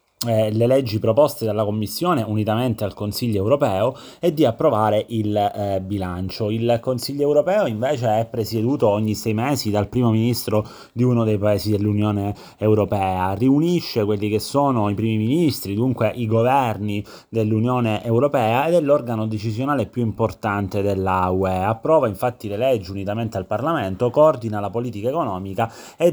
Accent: native